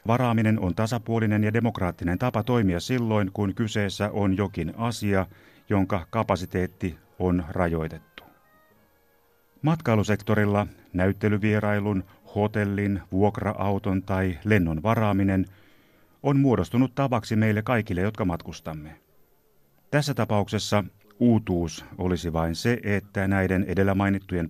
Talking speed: 100 wpm